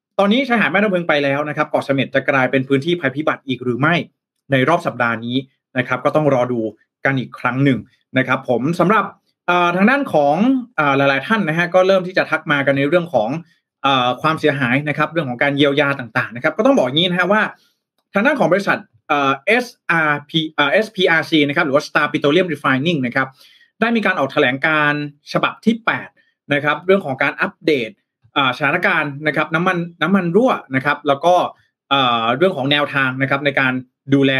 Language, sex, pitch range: Thai, male, 135-175 Hz